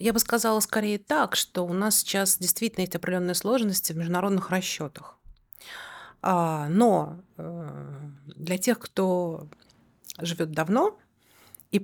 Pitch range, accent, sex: 170-225 Hz, native, female